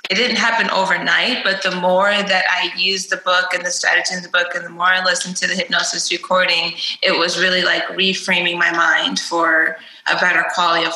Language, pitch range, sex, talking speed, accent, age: English, 175-195 Hz, female, 215 wpm, American, 20-39